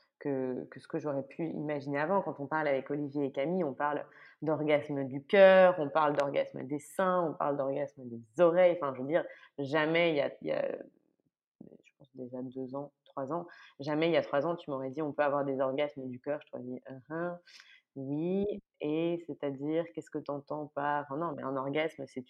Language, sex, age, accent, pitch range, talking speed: French, female, 20-39, French, 140-165 Hz, 220 wpm